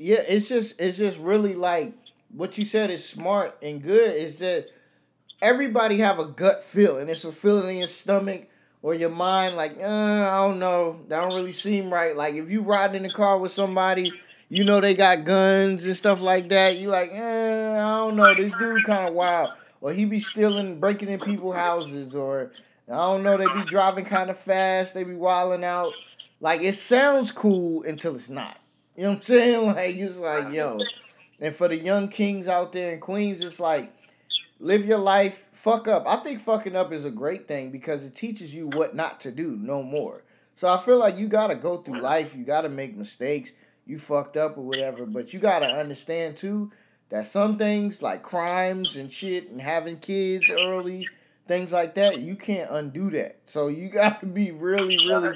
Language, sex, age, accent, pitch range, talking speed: English, male, 20-39, American, 165-205 Hz, 210 wpm